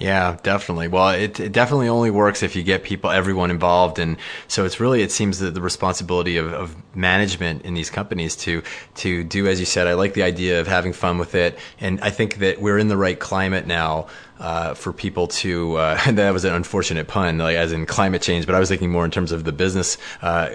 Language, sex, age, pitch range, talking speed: English, male, 20-39, 85-95 Hz, 235 wpm